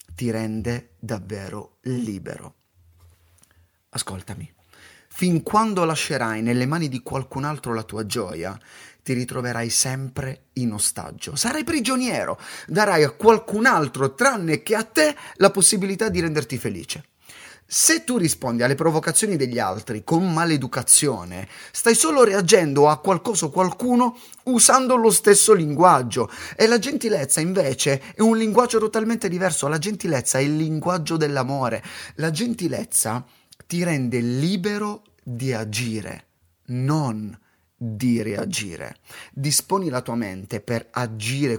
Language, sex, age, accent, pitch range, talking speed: Italian, male, 30-49, native, 110-175 Hz, 125 wpm